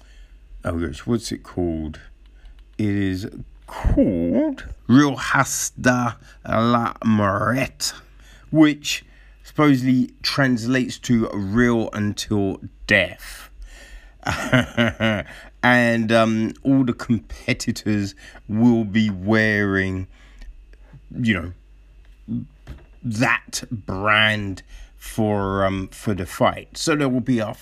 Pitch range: 105-135 Hz